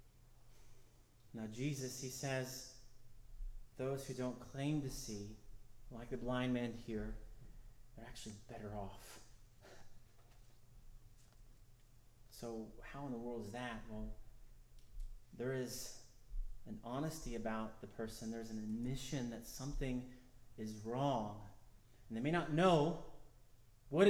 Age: 30-49